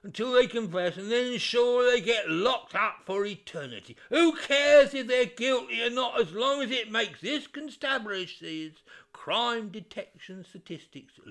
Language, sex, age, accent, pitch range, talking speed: English, male, 60-79, British, 180-260 Hz, 160 wpm